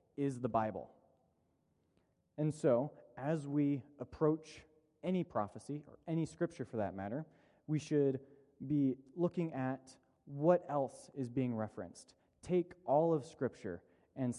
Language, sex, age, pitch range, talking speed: English, male, 20-39, 120-160 Hz, 130 wpm